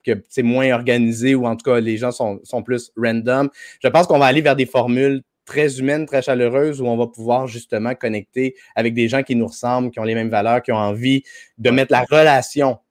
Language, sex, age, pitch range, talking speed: French, male, 30-49, 115-140 Hz, 230 wpm